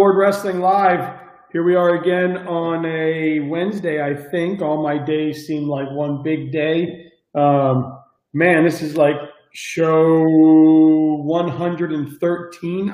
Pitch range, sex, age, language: 150-180 Hz, male, 40-59, English